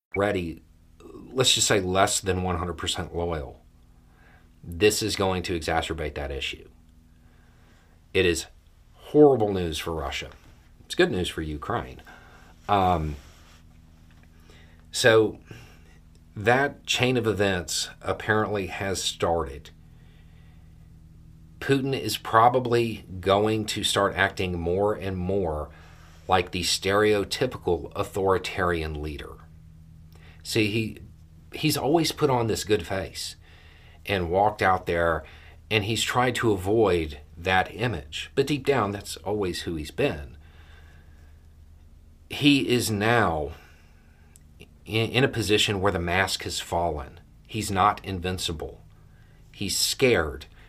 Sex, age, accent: male, 40-59, American